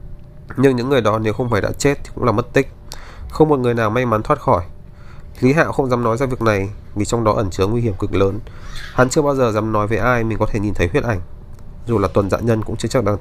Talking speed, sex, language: 285 wpm, male, Vietnamese